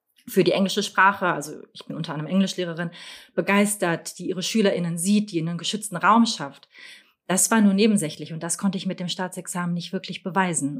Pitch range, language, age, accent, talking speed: 175-210 Hz, German, 30-49, German, 195 wpm